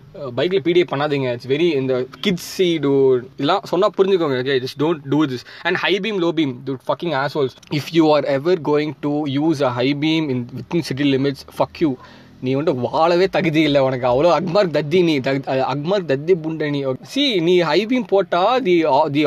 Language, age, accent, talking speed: Tamil, 20-39, native, 150 wpm